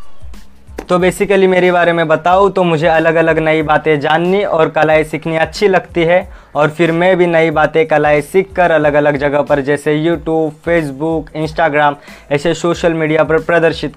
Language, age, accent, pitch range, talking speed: Hindi, 20-39, native, 150-170 Hz, 175 wpm